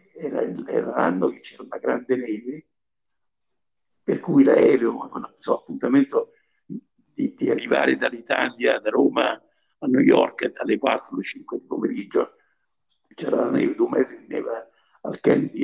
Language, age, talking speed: Italian, 60-79, 130 wpm